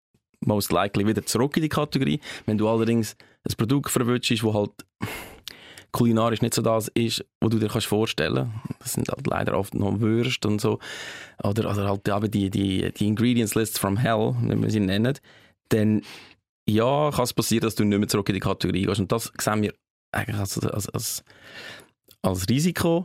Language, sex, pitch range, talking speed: German, male, 100-115 Hz, 185 wpm